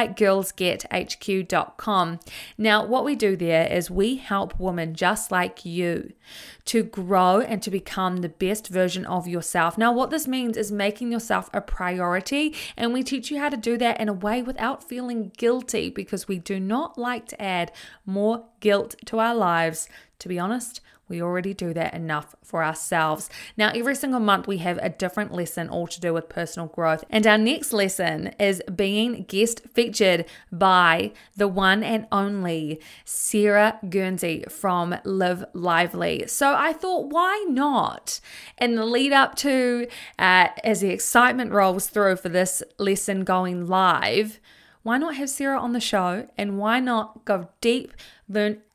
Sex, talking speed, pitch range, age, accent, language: female, 165 wpm, 185-235 Hz, 20-39, Australian, English